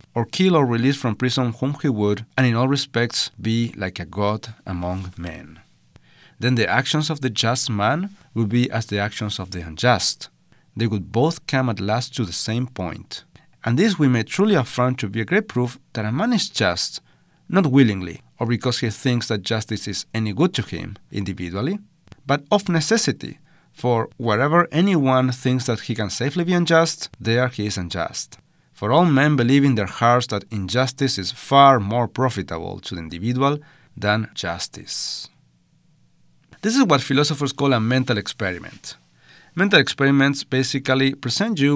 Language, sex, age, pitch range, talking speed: English, male, 40-59, 105-140 Hz, 175 wpm